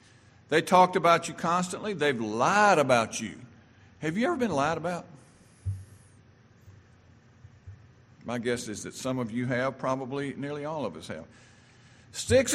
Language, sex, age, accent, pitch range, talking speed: English, male, 50-69, American, 115-150 Hz, 145 wpm